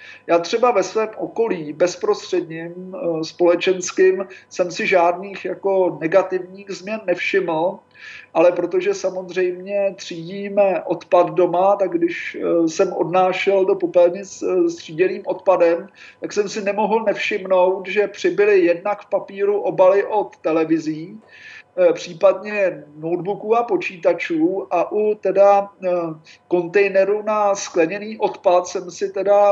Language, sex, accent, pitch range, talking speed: Czech, male, native, 175-205 Hz, 115 wpm